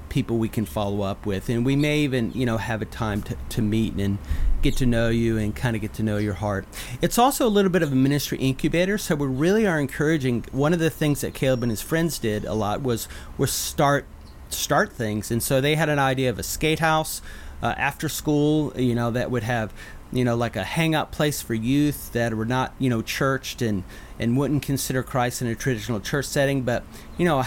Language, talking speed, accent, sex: English, 235 wpm, American, male